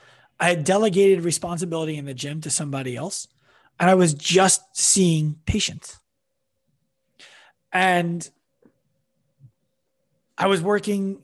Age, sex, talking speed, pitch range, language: 30-49, male, 105 wpm, 150-190 Hz, English